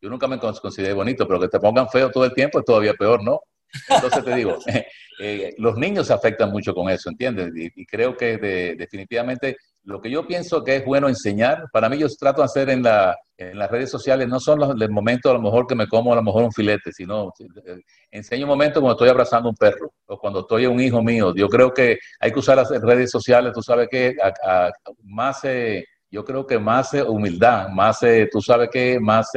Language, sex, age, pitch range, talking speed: Spanish, male, 50-69, 105-130 Hz, 235 wpm